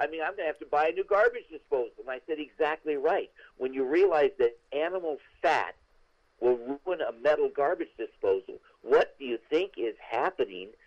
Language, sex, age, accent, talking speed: English, male, 50-69, American, 195 wpm